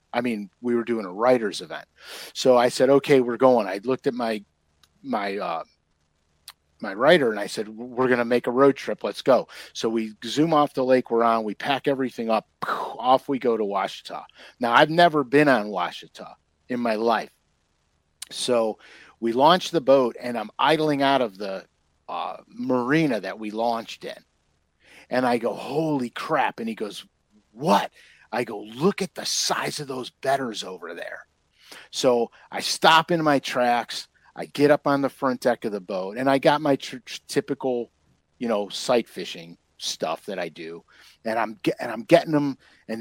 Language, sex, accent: English, male, American